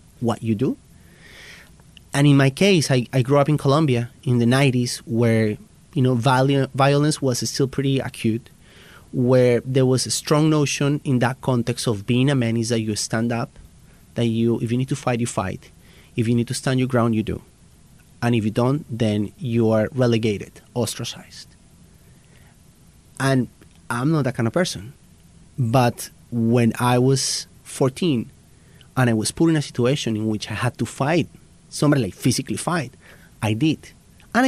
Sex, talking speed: male, 180 wpm